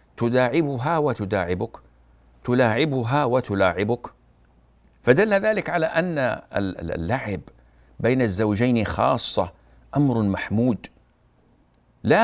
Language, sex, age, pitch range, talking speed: Arabic, male, 50-69, 105-135 Hz, 75 wpm